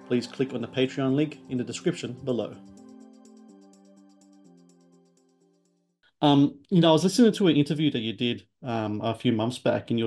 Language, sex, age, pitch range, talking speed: English, male, 40-59, 115-130 Hz, 175 wpm